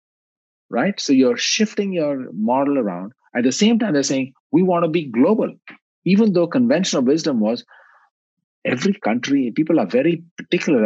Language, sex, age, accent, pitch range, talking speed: English, male, 50-69, Indian, 140-225 Hz, 160 wpm